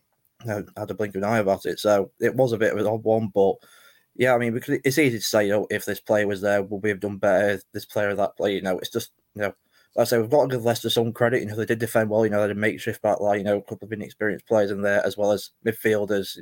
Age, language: 20-39, English